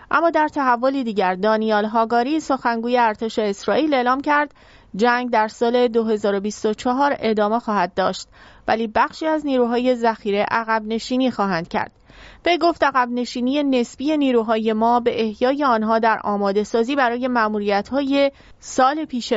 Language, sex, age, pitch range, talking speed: English, female, 30-49, 220-275 Hz, 135 wpm